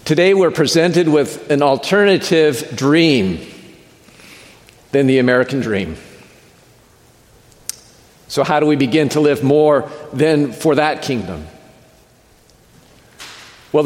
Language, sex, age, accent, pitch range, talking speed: English, male, 50-69, American, 140-175 Hz, 105 wpm